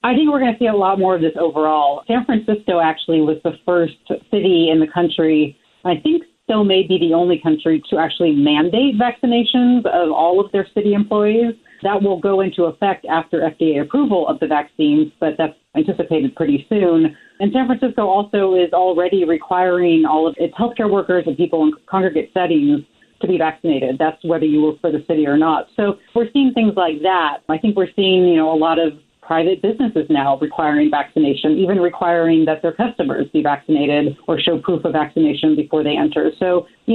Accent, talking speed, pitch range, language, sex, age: American, 200 wpm, 160-200 Hz, English, female, 30-49